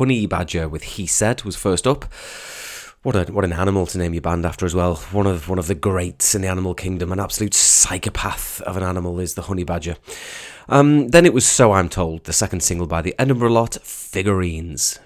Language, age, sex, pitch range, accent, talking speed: English, 30-49, male, 85-110 Hz, British, 210 wpm